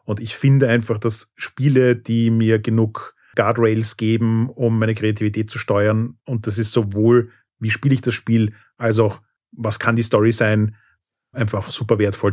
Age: 30-49